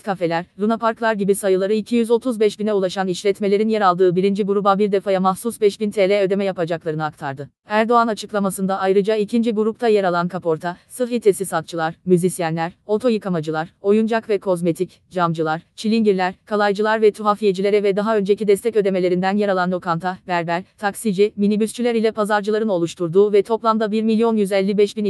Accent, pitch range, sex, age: native, 185-215 Hz, female, 30-49